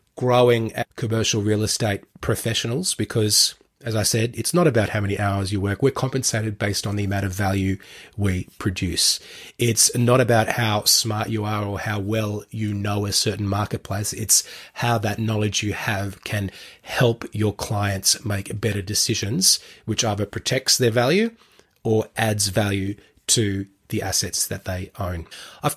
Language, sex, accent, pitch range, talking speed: English, male, Australian, 105-120 Hz, 165 wpm